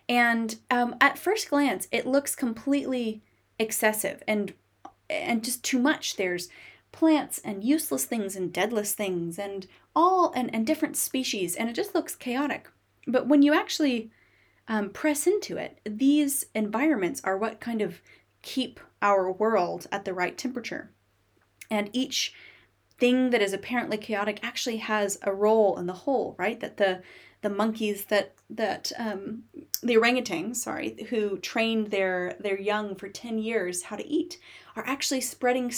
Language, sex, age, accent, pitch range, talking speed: English, female, 20-39, American, 205-280 Hz, 155 wpm